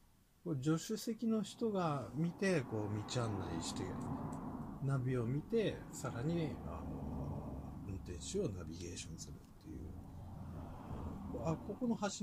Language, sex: Japanese, male